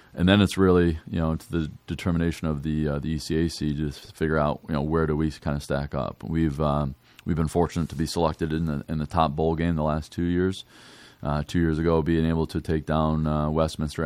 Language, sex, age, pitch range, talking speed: English, male, 20-39, 75-85 Hz, 245 wpm